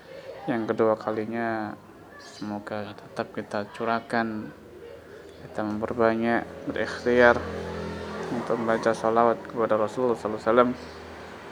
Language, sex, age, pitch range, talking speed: Indonesian, male, 20-39, 110-120 Hz, 85 wpm